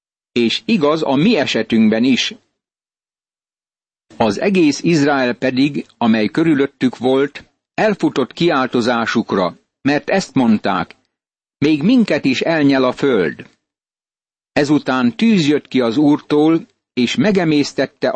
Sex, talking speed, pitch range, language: male, 105 wpm, 125-155 Hz, Hungarian